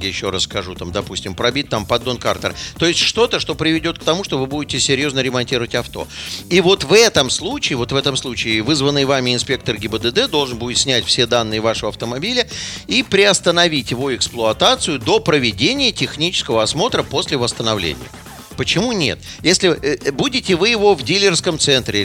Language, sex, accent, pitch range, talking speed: Russian, male, native, 120-175 Hz, 165 wpm